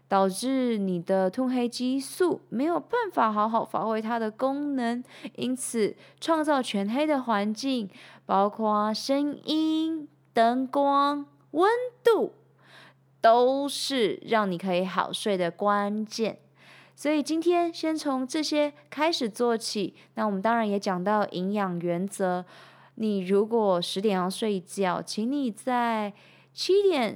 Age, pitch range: 20-39, 200-280 Hz